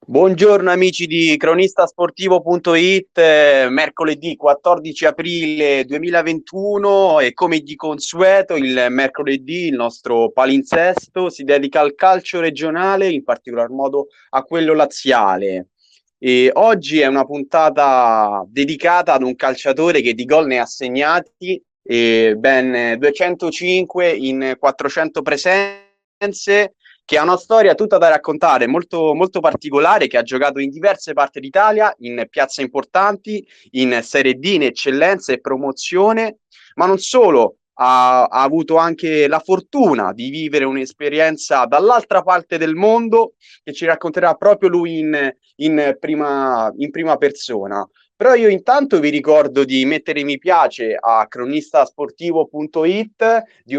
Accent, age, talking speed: native, 20-39, 125 wpm